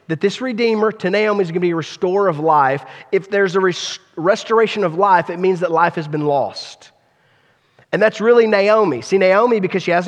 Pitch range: 155-210 Hz